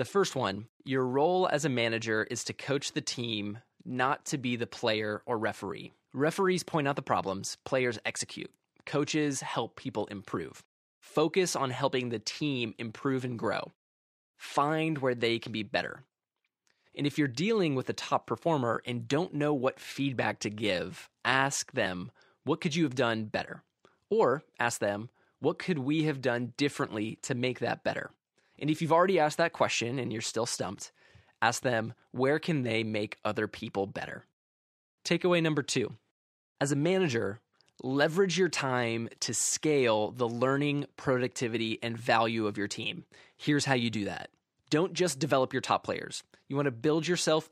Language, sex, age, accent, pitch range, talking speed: English, male, 20-39, American, 115-150 Hz, 170 wpm